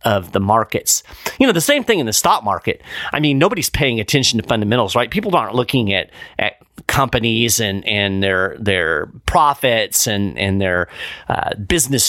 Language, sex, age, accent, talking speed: English, male, 40-59, American, 180 wpm